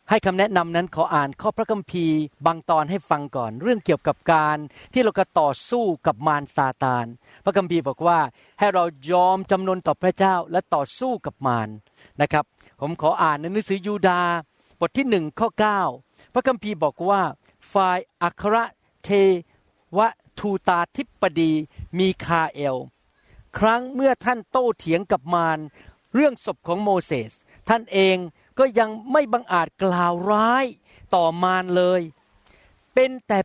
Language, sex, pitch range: Thai, male, 165-230 Hz